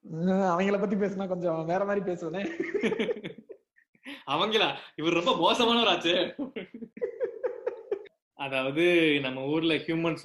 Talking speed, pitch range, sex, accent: 70 wpm, 150-215 Hz, male, native